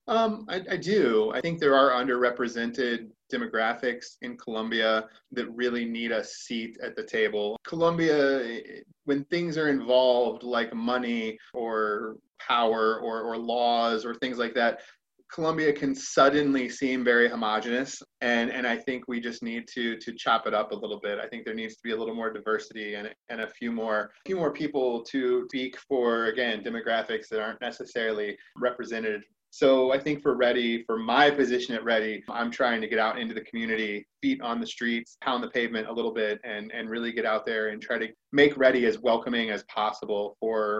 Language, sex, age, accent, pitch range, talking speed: English, male, 20-39, American, 110-130 Hz, 190 wpm